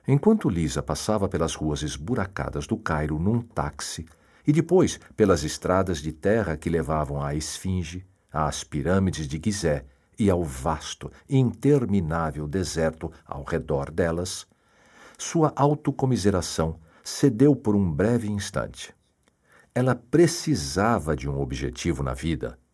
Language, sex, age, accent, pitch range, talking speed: Portuguese, male, 60-79, Brazilian, 80-130 Hz, 125 wpm